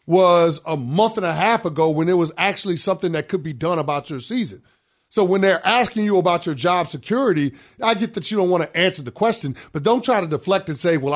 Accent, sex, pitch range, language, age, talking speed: American, male, 200-300 Hz, English, 30-49, 245 wpm